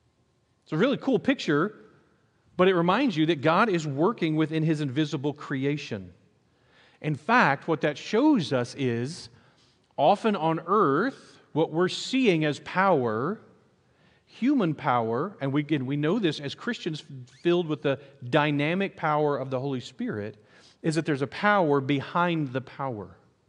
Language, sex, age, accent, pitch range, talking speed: English, male, 40-59, American, 130-170 Hz, 150 wpm